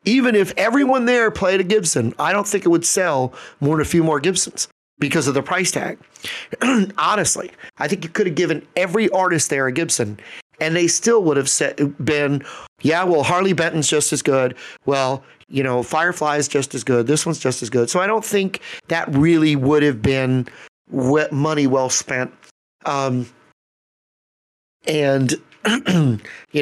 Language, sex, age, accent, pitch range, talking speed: English, male, 40-59, American, 140-190 Hz, 170 wpm